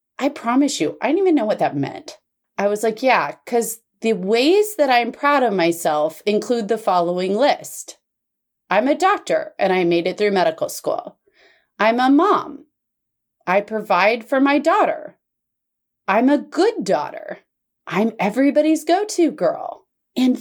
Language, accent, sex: English, American, female